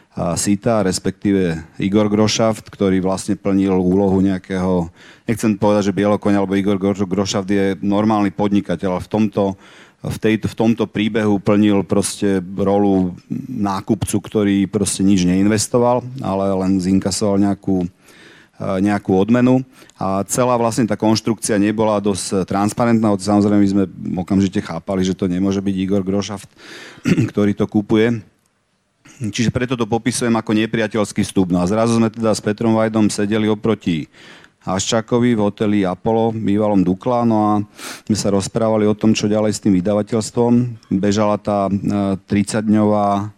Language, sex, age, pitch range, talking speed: Slovak, male, 40-59, 95-110 Hz, 140 wpm